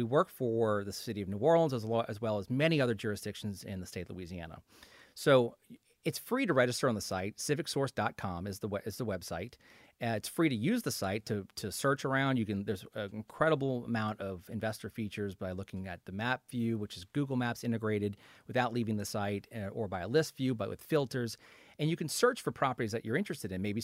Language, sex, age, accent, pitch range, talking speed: English, male, 30-49, American, 105-140 Hz, 225 wpm